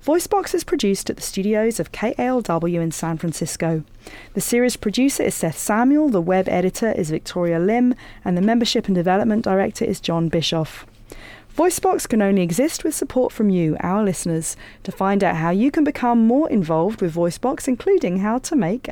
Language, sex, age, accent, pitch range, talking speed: English, female, 40-59, British, 170-245 Hz, 180 wpm